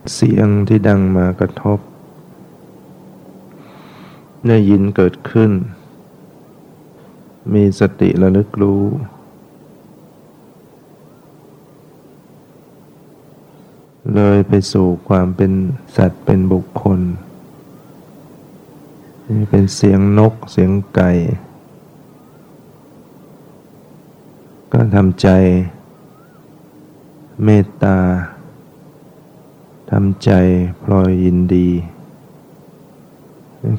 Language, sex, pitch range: Thai, male, 90-105 Hz